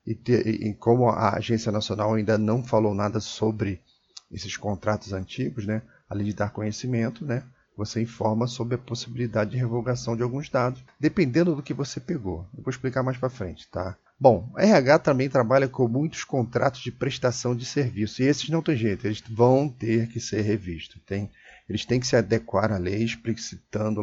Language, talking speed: Portuguese, 185 wpm